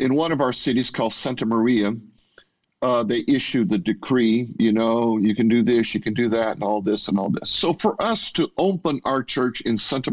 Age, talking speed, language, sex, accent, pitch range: 50-69, 225 wpm, English, male, American, 110-135 Hz